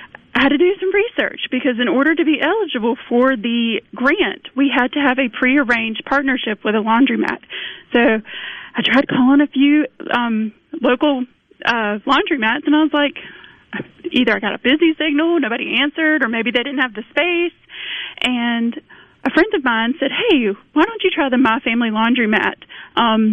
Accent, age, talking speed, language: American, 30-49, 180 wpm, English